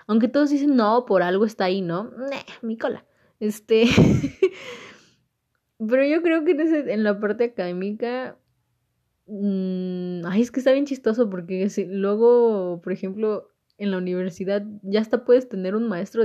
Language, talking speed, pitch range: Spanish, 150 wpm, 175-225 Hz